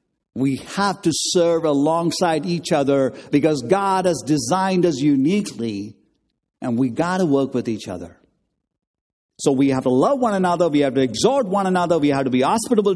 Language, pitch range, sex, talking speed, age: English, 115-175 Hz, male, 180 wpm, 50-69